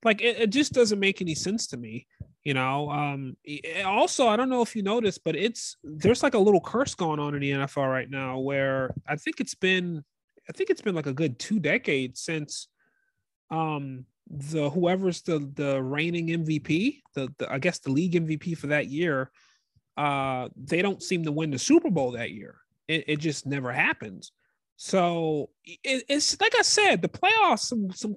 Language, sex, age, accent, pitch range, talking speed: English, male, 30-49, American, 145-225 Hz, 195 wpm